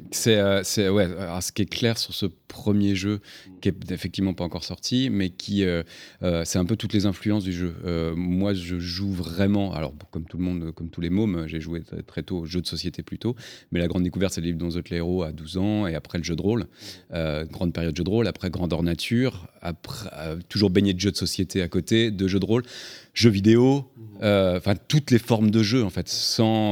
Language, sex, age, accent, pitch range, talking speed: French, male, 30-49, French, 90-115 Hz, 245 wpm